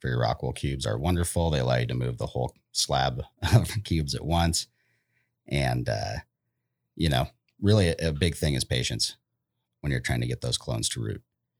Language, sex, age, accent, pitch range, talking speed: English, male, 30-49, American, 70-85 Hz, 190 wpm